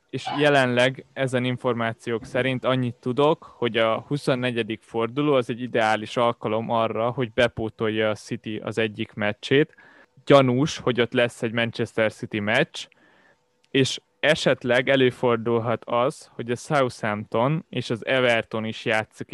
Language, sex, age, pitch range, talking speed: Hungarian, male, 20-39, 115-130 Hz, 135 wpm